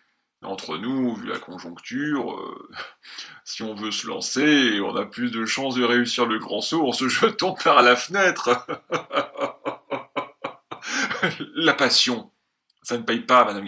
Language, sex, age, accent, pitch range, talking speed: French, male, 40-59, French, 115-150 Hz, 150 wpm